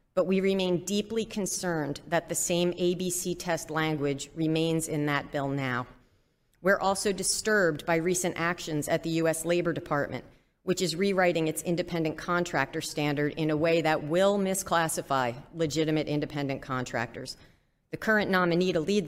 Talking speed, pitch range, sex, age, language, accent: 150 wpm, 150-185 Hz, female, 40-59, English, American